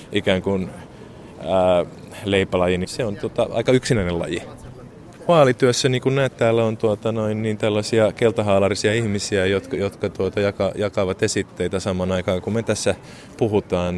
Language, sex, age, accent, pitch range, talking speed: Finnish, male, 20-39, native, 90-105 Hz, 140 wpm